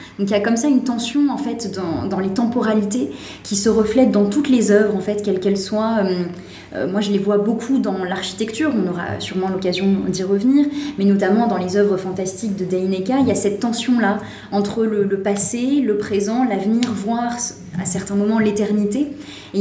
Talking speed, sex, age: 205 wpm, female, 20-39